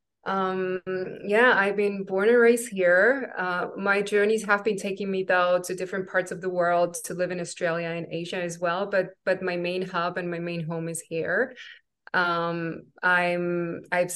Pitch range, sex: 175-210 Hz, female